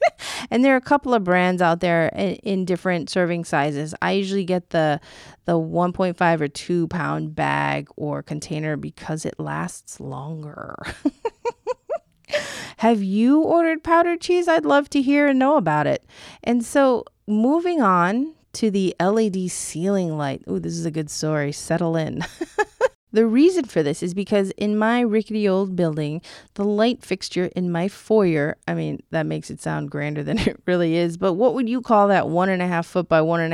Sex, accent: female, American